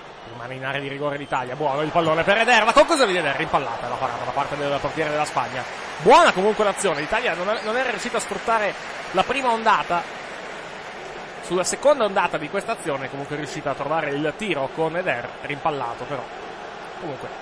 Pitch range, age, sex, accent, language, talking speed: 130-170 Hz, 30-49, male, native, Italian, 190 wpm